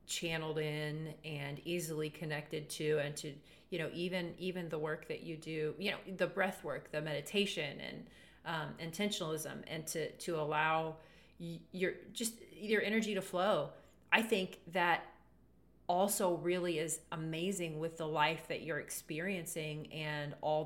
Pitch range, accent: 150-180 Hz, American